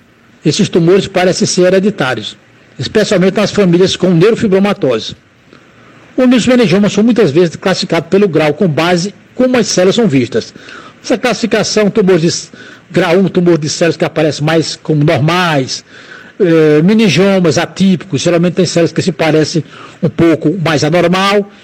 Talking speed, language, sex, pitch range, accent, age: 145 wpm, Portuguese, male, 175-220 Hz, Brazilian, 60-79